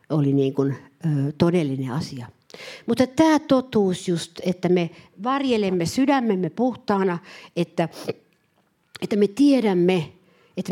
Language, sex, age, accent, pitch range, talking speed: Finnish, female, 60-79, native, 170-235 Hz, 110 wpm